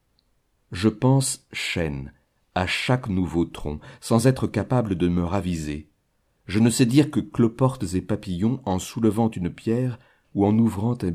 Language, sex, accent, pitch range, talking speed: French, male, French, 85-110 Hz, 155 wpm